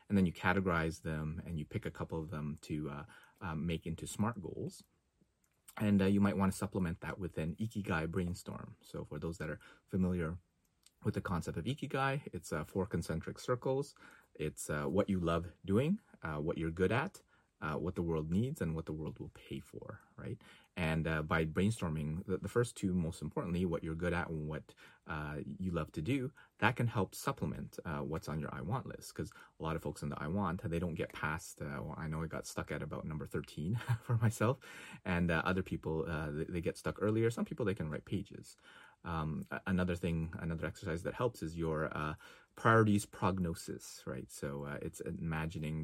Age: 30-49